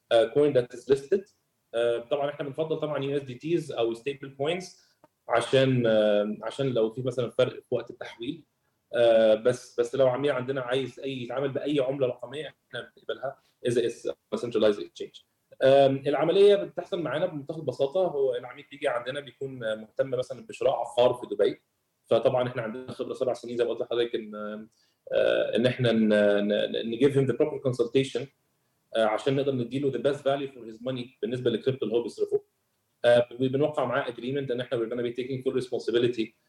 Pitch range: 120-155 Hz